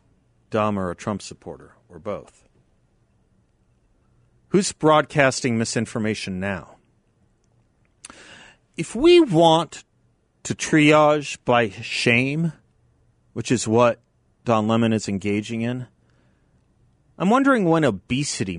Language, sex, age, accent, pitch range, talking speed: English, male, 40-59, American, 100-135 Hz, 95 wpm